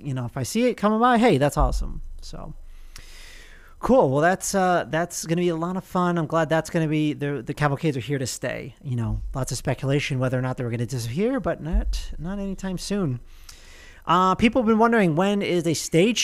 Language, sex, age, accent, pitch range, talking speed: English, male, 30-49, American, 120-165 Hz, 235 wpm